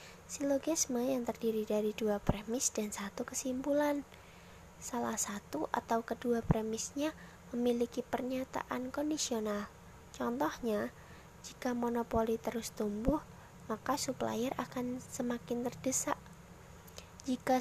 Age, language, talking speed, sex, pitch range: 20-39, Indonesian, 95 wpm, female, 225-270 Hz